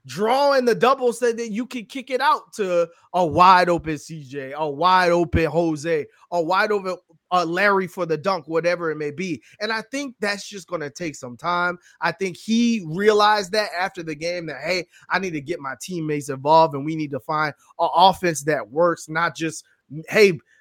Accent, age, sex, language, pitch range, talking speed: American, 20-39, male, English, 155-210 Hz, 190 wpm